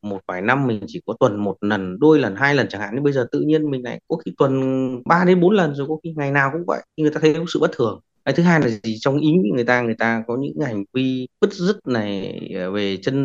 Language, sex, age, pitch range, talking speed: Vietnamese, male, 20-39, 125-175 Hz, 275 wpm